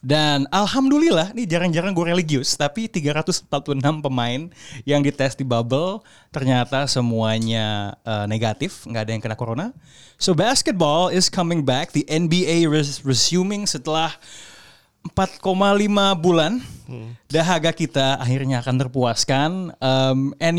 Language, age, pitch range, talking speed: Indonesian, 20-39, 130-190 Hz, 120 wpm